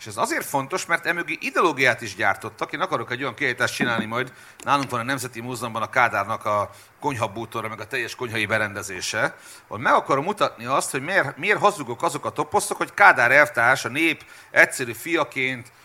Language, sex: Hungarian, male